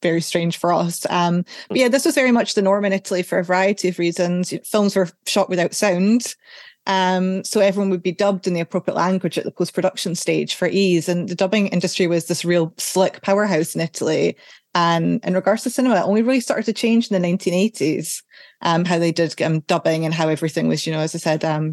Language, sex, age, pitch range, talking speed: English, female, 20-39, 170-195 Hz, 230 wpm